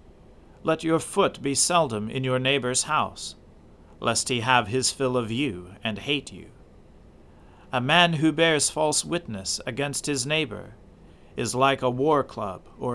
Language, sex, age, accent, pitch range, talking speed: English, male, 40-59, American, 100-140 Hz, 160 wpm